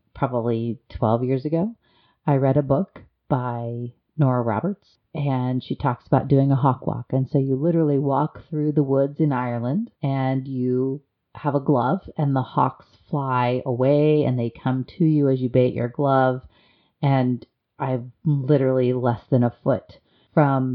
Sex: female